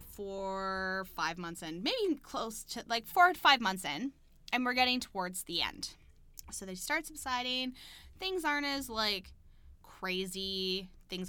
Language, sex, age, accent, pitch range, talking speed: English, female, 10-29, American, 185-255 Hz, 155 wpm